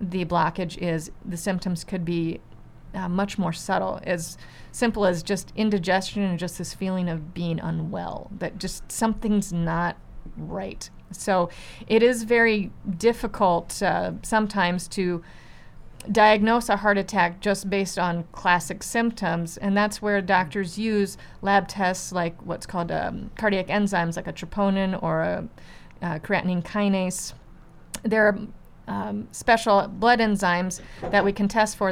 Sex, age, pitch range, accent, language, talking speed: female, 30-49, 175-205 Hz, American, English, 145 wpm